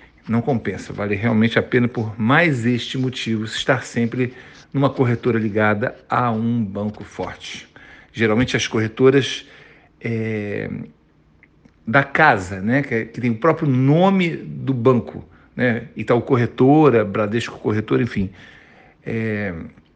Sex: male